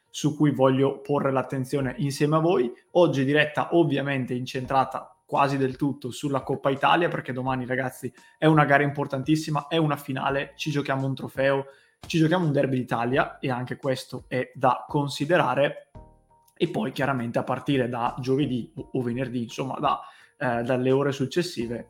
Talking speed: 160 wpm